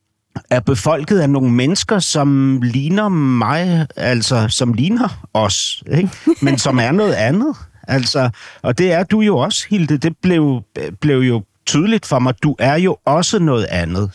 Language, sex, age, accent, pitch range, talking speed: Danish, male, 60-79, native, 120-160 Hz, 165 wpm